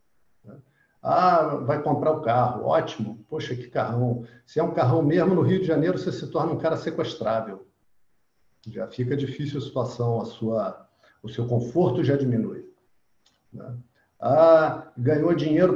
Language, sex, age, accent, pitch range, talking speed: Portuguese, male, 50-69, Brazilian, 125-170 Hz, 155 wpm